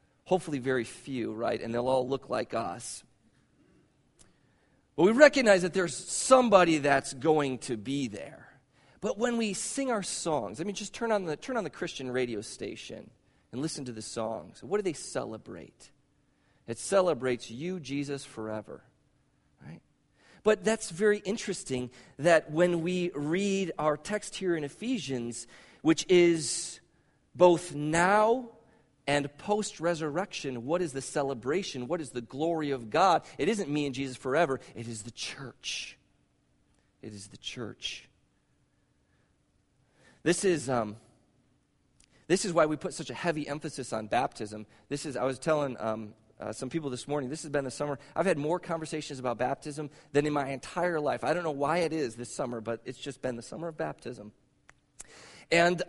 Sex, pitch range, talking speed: male, 125-175 Hz, 170 wpm